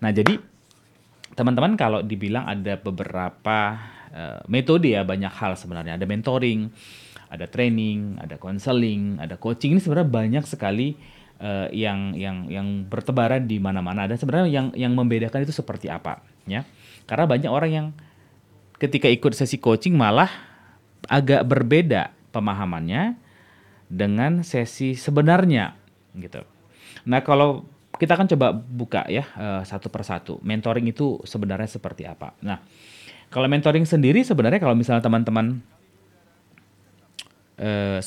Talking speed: 125 wpm